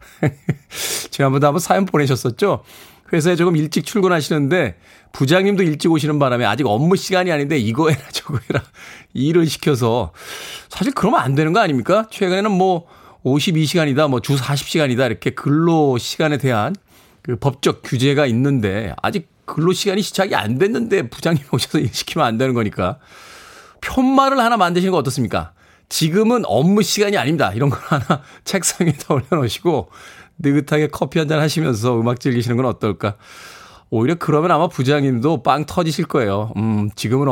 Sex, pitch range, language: male, 120-165 Hz, Korean